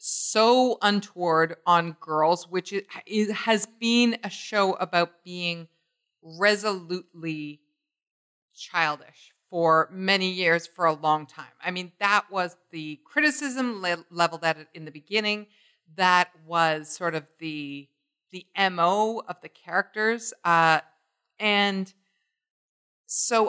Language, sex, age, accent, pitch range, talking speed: English, female, 40-59, American, 170-230 Hz, 115 wpm